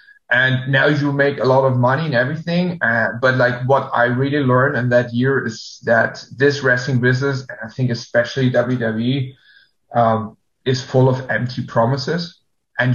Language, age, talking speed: English, 30-49, 170 wpm